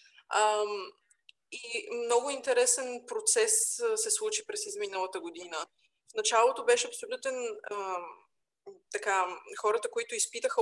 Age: 20-39